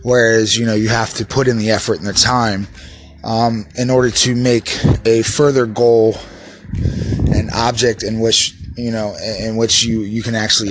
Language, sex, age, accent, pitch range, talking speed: English, male, 20-39, American, 105-120 Hz, 185 wpm